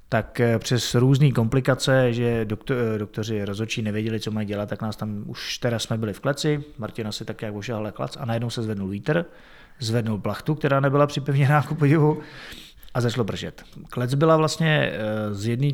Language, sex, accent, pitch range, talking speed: Czech, male, native, 105-125 Hz, 185 wpm